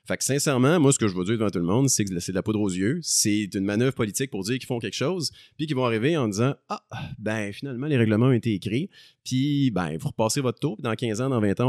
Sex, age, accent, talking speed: male, 30-49, Canadian, 305 wpm